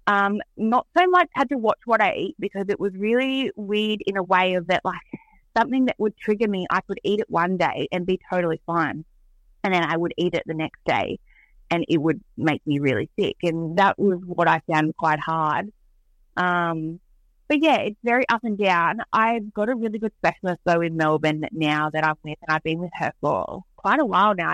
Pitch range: 165-200 Hz